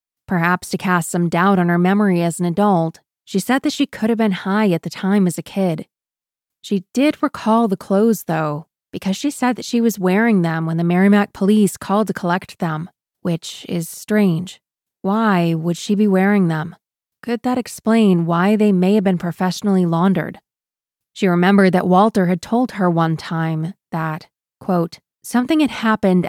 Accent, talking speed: American, 185 wpm